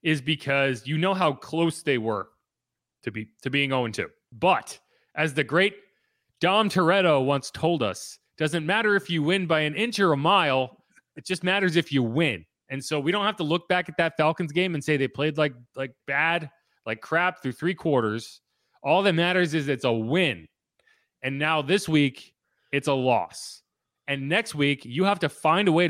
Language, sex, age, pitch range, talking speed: English, male, 30-49, 130-170 Hz, 200 wpm